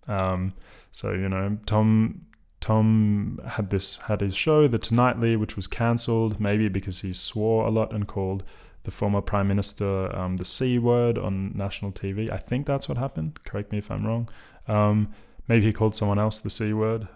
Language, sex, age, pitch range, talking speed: English, male, 20-39, 95-115 Hz, 190 wpm